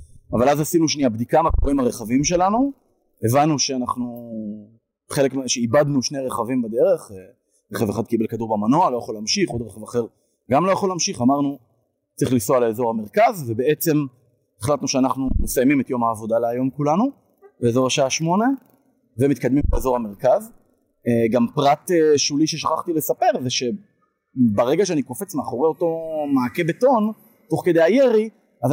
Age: 30-49